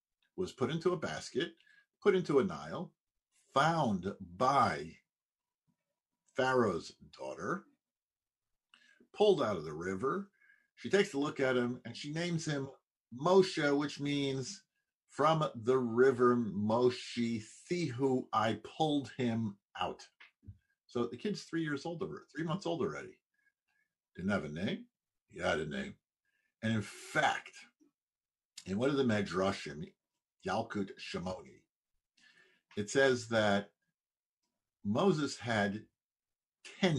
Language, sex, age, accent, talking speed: English, male, 50-69, American, 120 wpm